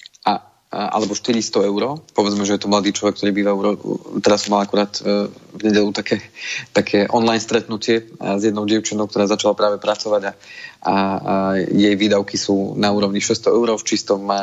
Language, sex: Slovak, male